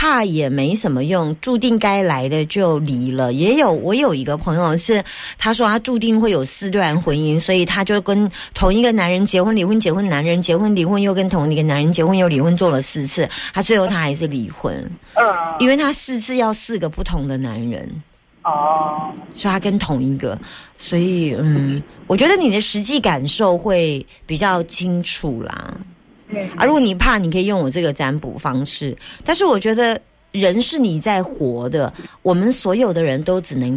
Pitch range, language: 150-215 Hz, Chinese